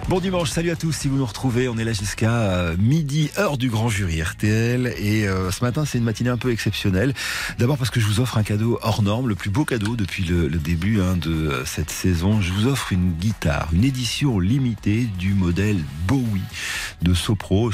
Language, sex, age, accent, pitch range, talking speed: French, male, 40-59, French, 95-125 Hz, 220 wpm